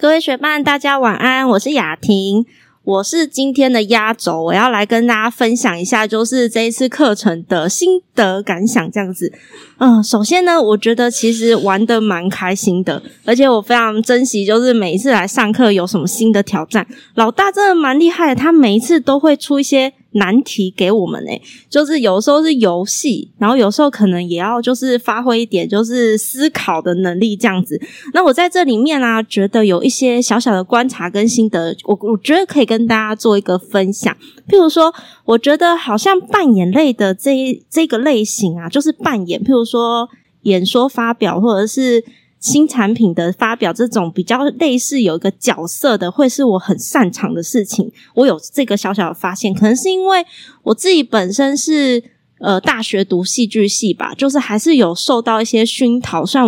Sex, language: female, Chinese